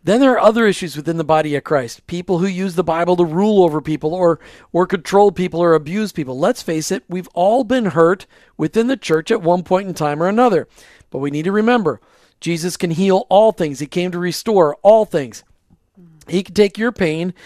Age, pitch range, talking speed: 50-69, 160-205 Hz, 220 wpm